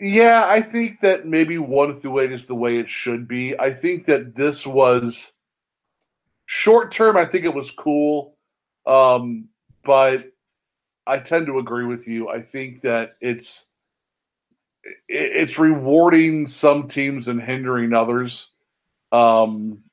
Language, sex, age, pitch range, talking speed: English, male, 50-69, 110-130 Hz, 140 wpm